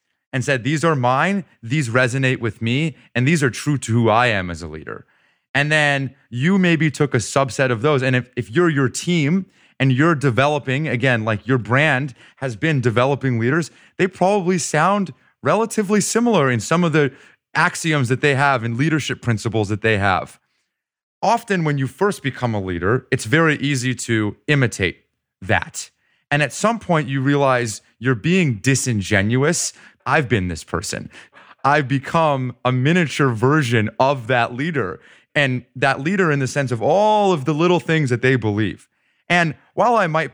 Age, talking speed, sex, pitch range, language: 30-49, 175 wpm, male, 115-150 Hz, English